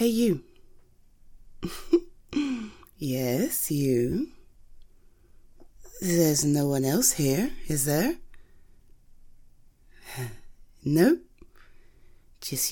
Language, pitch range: English, 130-180 Hz